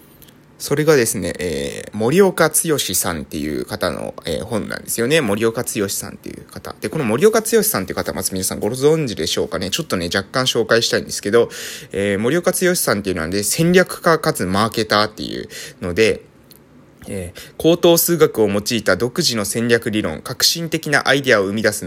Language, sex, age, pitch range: Japanese, male, 20-39, 110-165 Hz